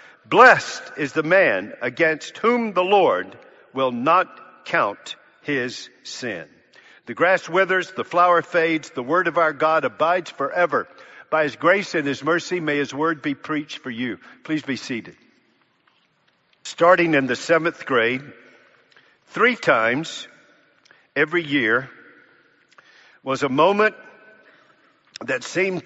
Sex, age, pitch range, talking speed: male, 50-69, 135-175 Hz, 130 wpm